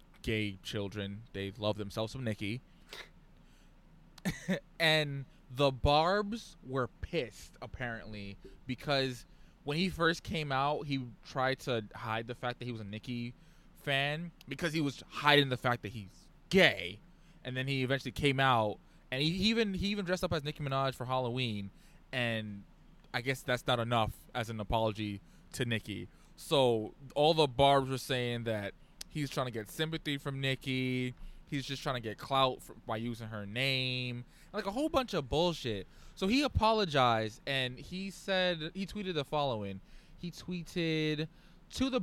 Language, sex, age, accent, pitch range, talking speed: English, male, 20-39, American, 115-160 Hz, 165 wpm